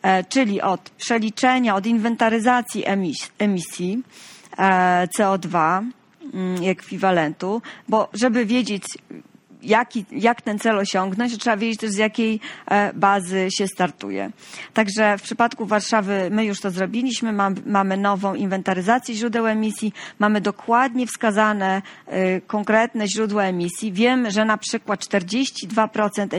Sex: female